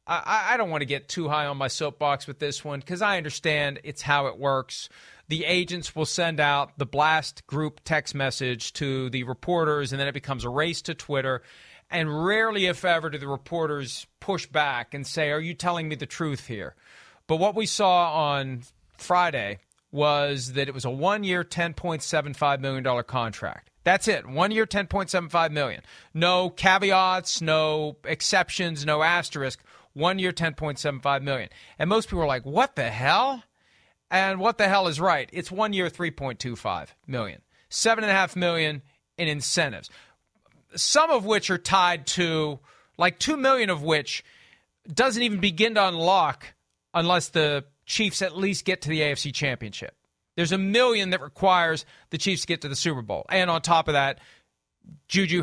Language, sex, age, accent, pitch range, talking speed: English, male, 40-59, American, 140-180 Hz, 170 wpm